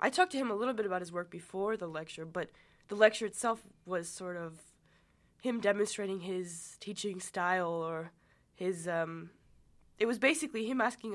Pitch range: 180-220 Hz